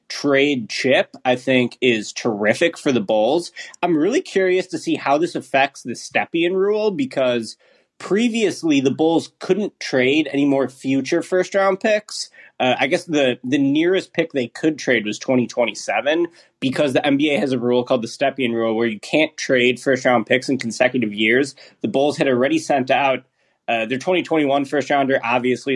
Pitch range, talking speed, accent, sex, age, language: 120-165 Hz, 170 wpm, American, male, 20-39, English